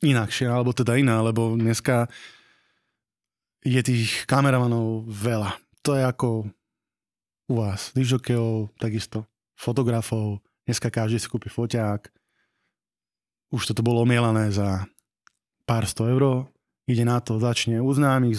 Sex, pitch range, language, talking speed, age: male, 110-130 Hz, Slovak, 120 wpm, 20-39